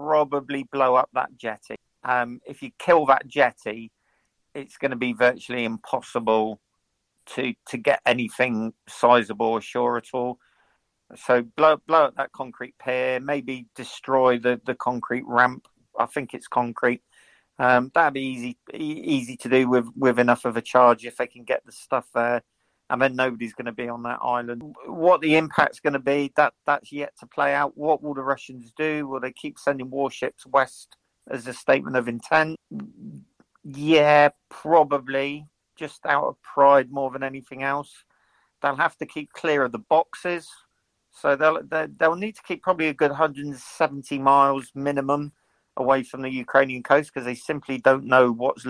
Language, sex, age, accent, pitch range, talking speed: English, male, 50-69, British, 125-145 Hz, 175 wpm